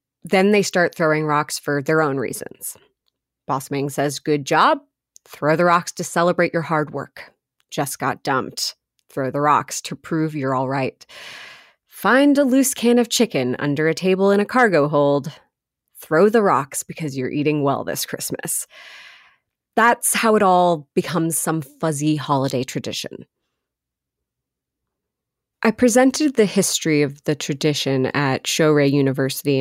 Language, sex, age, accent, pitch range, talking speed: English, female, 30-49, American, 140-175 Hz, 150 wpm